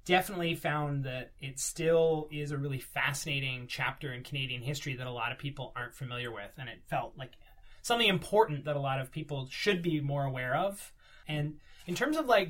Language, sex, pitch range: English, male, 140-165 Hz